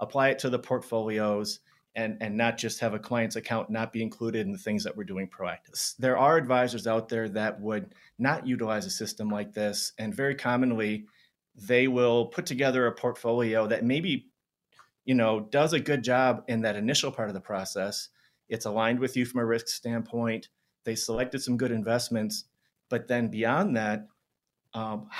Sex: male